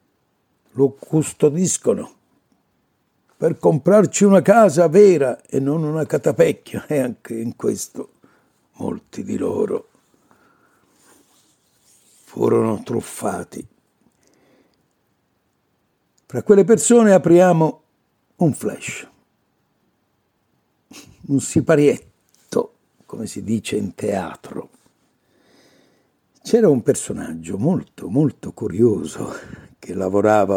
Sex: male